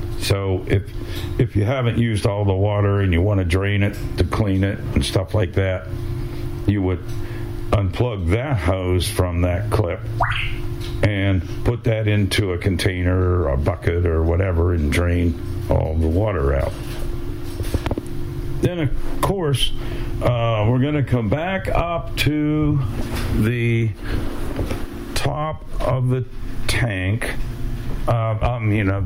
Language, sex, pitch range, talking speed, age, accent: English, male, 100-125 Hz, 145 wpm, 60-79, American